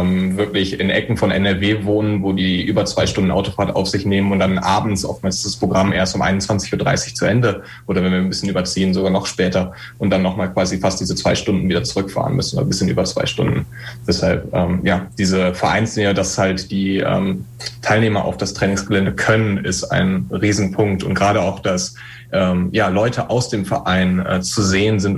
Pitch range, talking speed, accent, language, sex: 95-110 Hz, 190 wpm, German, German, male